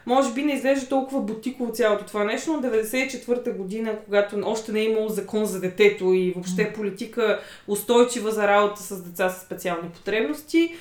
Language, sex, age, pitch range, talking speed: Bulgarian, female, 20-39, 205-255 Hz, 170 wpm